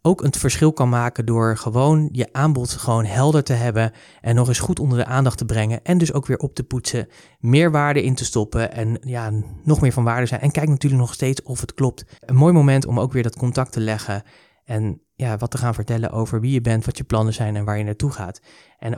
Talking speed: 250 wpm